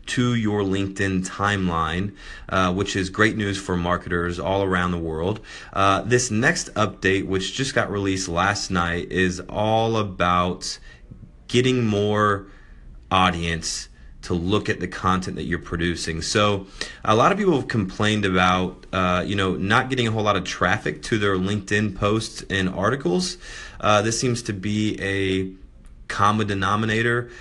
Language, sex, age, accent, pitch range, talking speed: English, male, 30-49, American, 90-105 Hz, 155 wpm